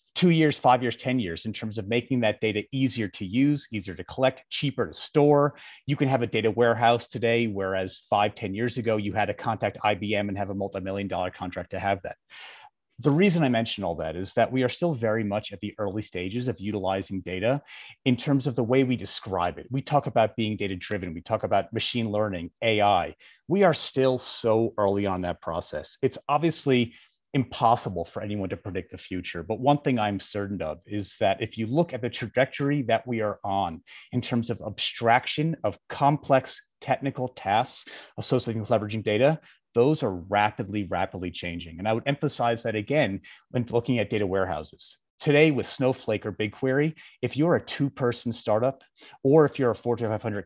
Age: 30-49